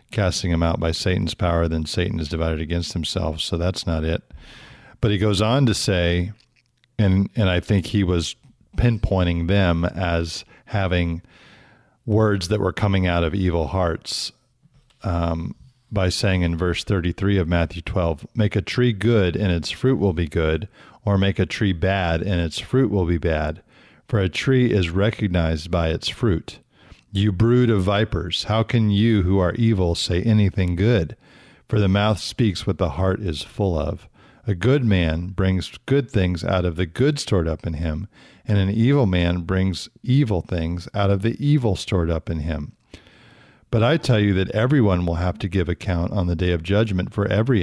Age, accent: 50-69, American